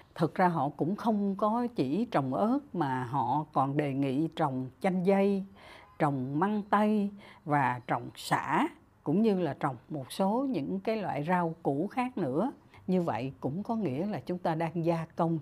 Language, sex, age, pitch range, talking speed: Vietnamese, female, 60-79, 155-230 Hz, 185 wpm